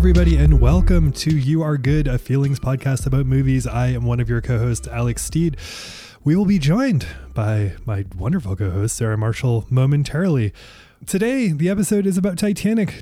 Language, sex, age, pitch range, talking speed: English, male, 20-39, 120-165 Hz, 180 wpm